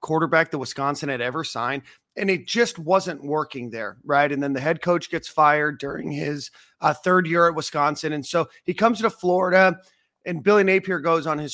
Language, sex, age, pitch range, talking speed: English, male, 30-49, 135-160 Hz, 205 wpm